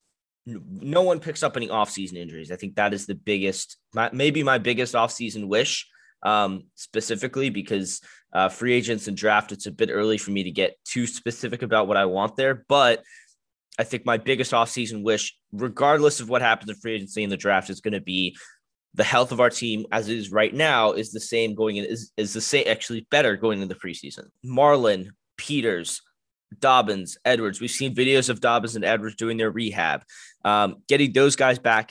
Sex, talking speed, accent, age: male, 200 wpm, American, 20-39